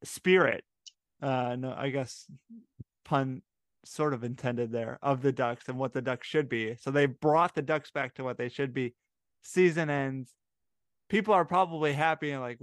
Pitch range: 120-145 Hz